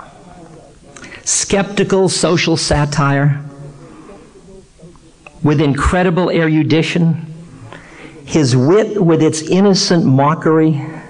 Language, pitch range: English, 140-180 Hz